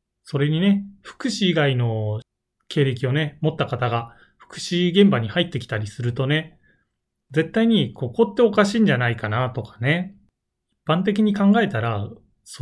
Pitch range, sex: 115-165 Hz, male